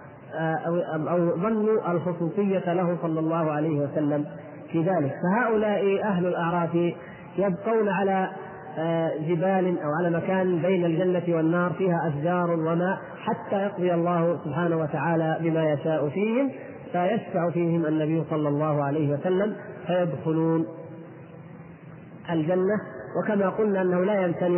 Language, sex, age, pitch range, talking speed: Arabic, male, 30-49, 160-195 Hz, 115 wpm